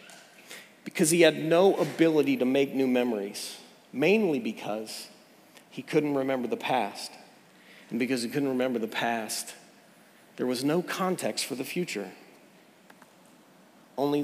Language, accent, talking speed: English, American, 130 wpm